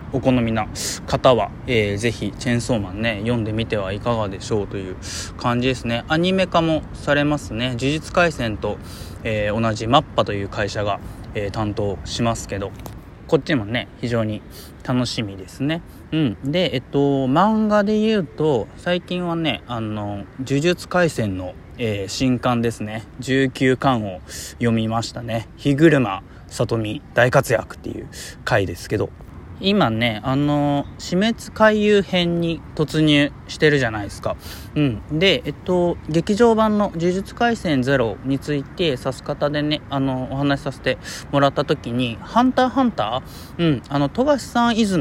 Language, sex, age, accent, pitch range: Japanese, male, 20-39, native, 110-160 Hz